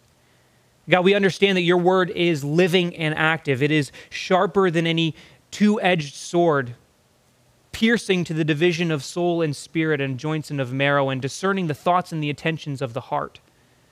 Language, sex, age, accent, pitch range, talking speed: English, male, 30-49, American, 125-160 Hz, 170 wpm